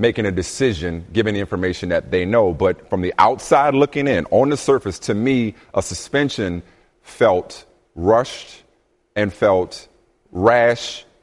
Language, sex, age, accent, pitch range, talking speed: English, male, 30-49, American, 105-145 Hz, 145 wpm